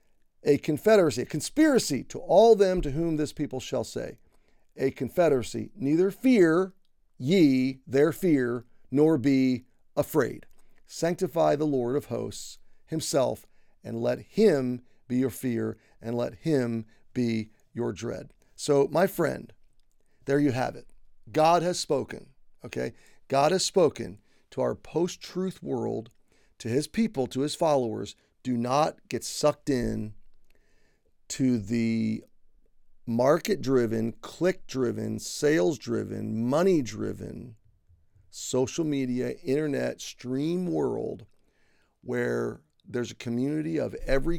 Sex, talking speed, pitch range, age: male, 120 wpm, 115-155 Hz, 40-59